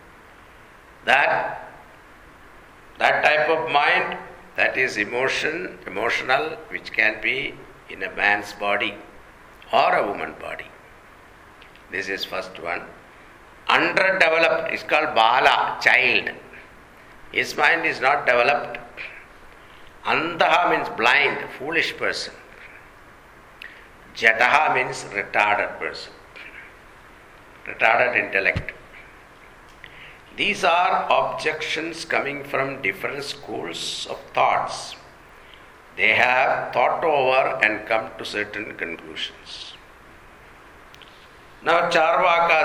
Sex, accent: male, Indian